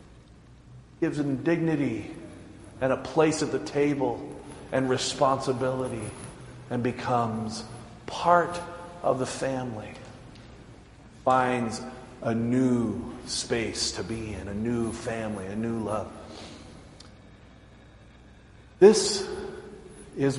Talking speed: 95 wpm